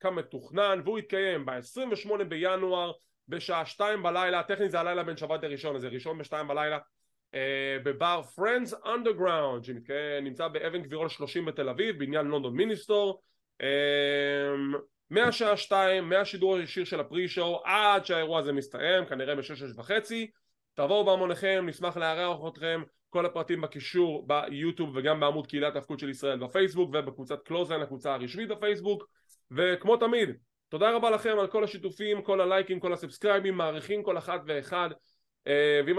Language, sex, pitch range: English, male, 150-205 Hz